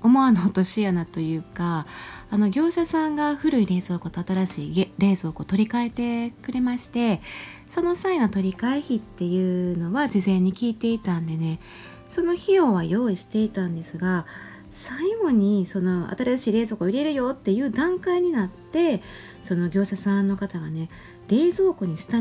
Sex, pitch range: female, 180-265 Hz